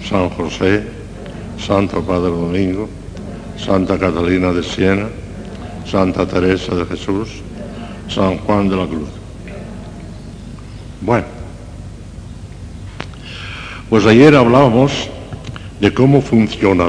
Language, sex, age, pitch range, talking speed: Spanish, male, 60-79, 90-115 Hz, 90 wpm